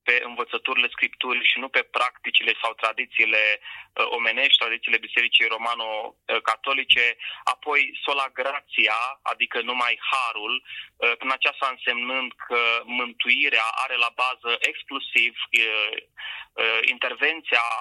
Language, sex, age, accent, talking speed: Romanian, male, 20-39, native, 115 wpm